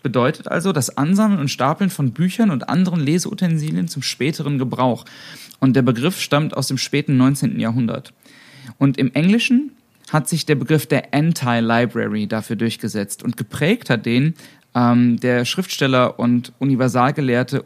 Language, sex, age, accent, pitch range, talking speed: German, male, 30-49, German, 120-155 Hz, 145 wpm